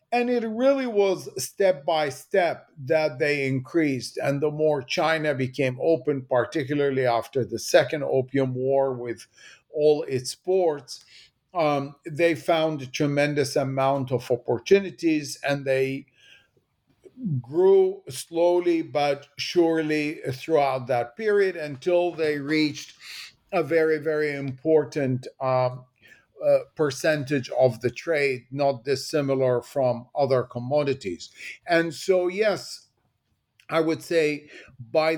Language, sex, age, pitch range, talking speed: English, male, 50-69, 135-165 Hz, 115 wpm